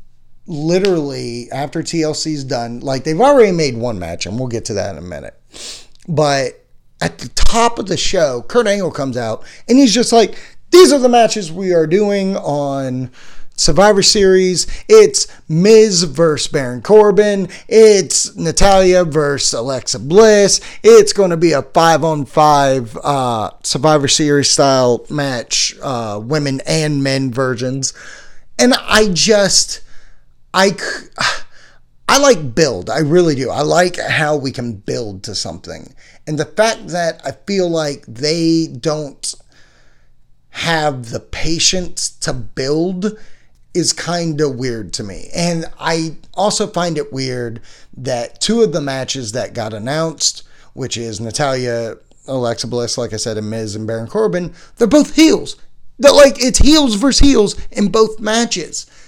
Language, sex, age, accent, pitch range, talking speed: English, male, 30-49, American, 130-195 Hz, 150 wpm